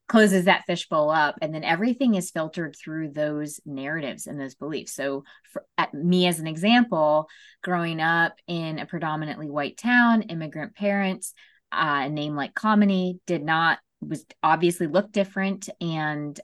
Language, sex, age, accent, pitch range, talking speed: English, female, 20-39, American, 145-185 Hz, 155 wpm